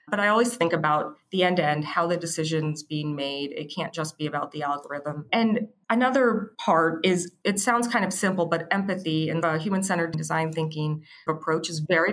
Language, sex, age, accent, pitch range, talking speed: English, female, 20-39, American, 155-190 Hz, 190 wpm